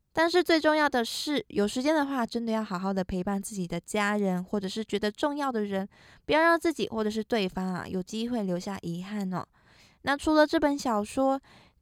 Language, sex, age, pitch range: Chinese, female, 20-39, 195-260 Hz